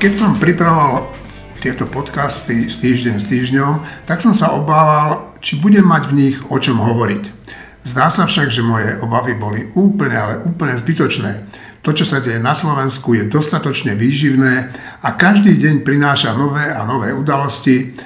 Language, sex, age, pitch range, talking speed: Slovak, male, 50-69, 115-145 Hz, 165 wpm